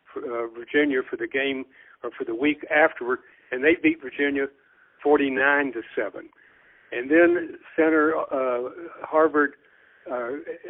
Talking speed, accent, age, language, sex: 130 wpm, American, 60-79, English, male